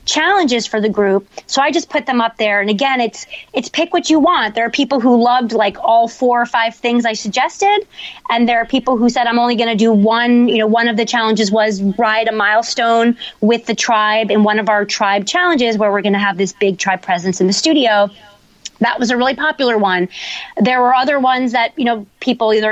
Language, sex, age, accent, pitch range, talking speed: English, female, 30-49, American, 215-260 Hz, 240 wpm